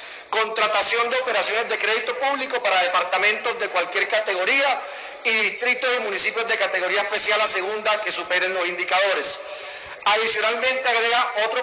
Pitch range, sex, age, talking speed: 200-245 Hz, male, 40-59, 140 wpm